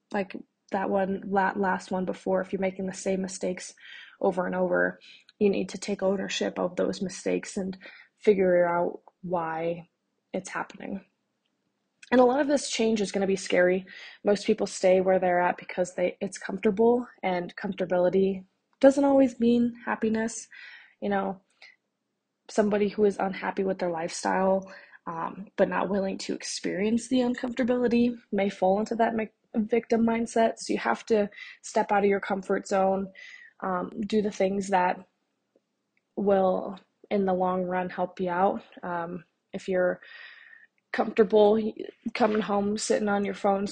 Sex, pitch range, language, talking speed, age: female, 185-220 Hz, English, 155 wpm, 20-39